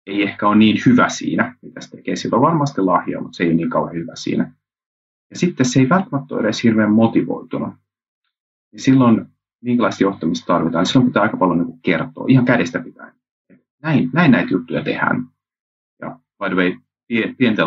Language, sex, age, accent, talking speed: Finnish, male, 30-49, native, 185 wpm